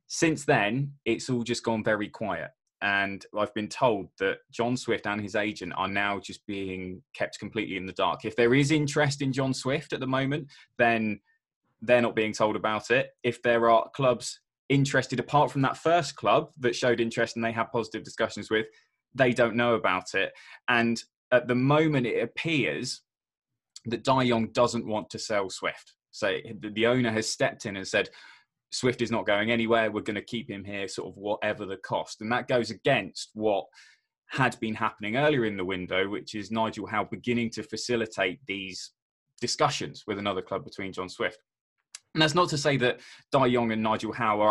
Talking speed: 195 wpm